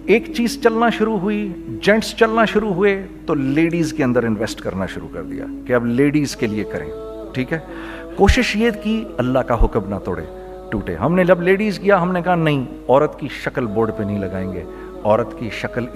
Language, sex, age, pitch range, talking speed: Urdu, male, 50-69, 110-165 Hz, 205 wpm